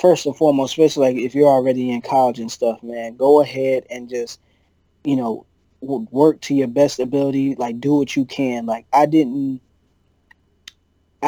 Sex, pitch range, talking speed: male, 130-150 Hz, 175 wpm